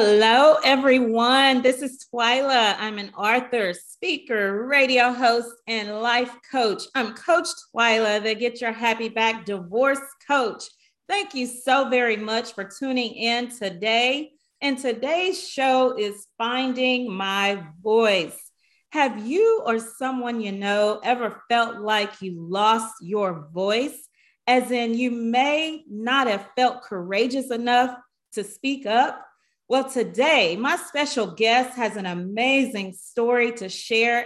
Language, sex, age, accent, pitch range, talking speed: English, female, 40-59, American, 215-270 Hz, 135 wpm